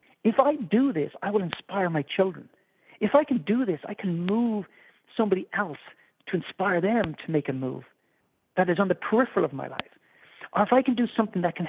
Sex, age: male, 50-69